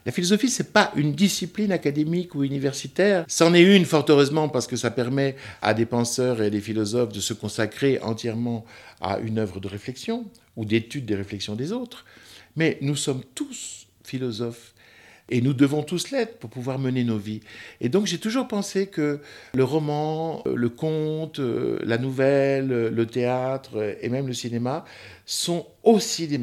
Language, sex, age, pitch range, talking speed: French, male, 60-79, 110-160 Hz, 175 wpm